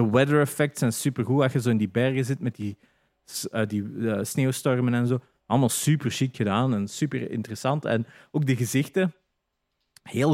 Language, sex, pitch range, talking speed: Dutch, male, 120-155 Hz, 185 wpm